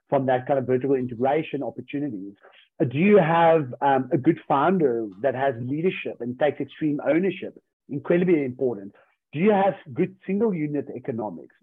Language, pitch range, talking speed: English, 130-170 Hz, 155 wpm